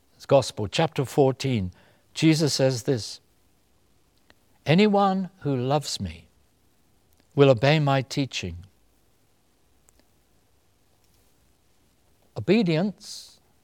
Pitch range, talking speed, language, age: 95-140 Hz, 65 wpm, English, 60-79